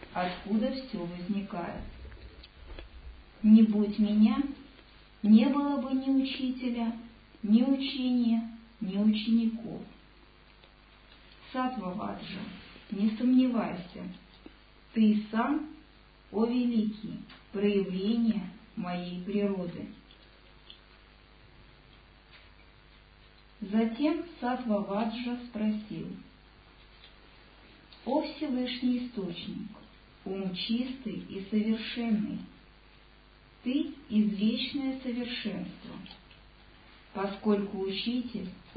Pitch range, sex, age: 205-255 Hz, male, 50-69